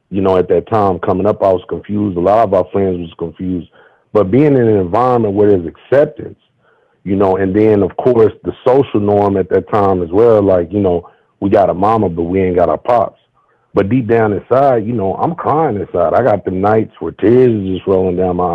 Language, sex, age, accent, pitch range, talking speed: English, male, 40-59, American, 95-120 Hz, 235 wpm